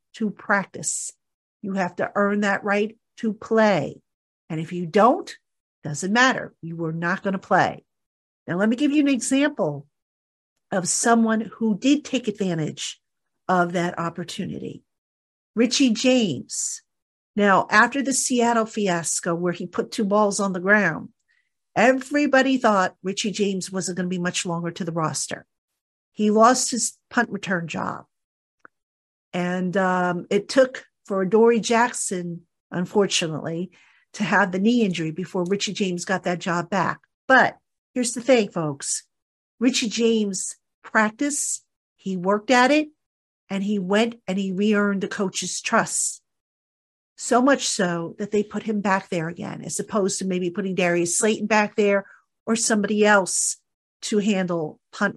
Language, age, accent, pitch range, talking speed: English, 50-69, American, 180-225 Hz, 150 wpm